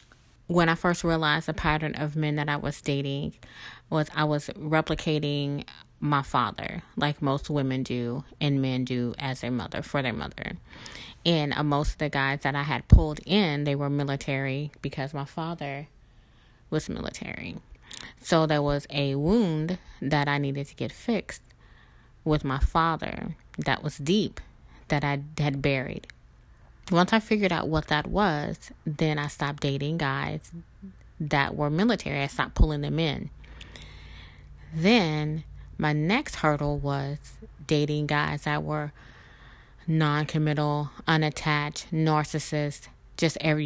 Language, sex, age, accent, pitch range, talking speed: English, female, 20-39, American, 140-155 Hz, 145 wpm